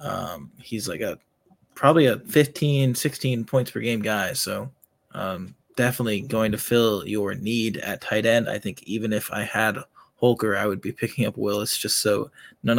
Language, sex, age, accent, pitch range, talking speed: English, male, 20-39, American, 110-130 Hz, 185 wpm